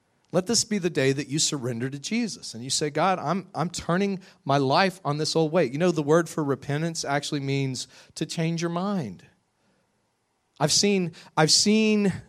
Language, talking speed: English, 190 wpm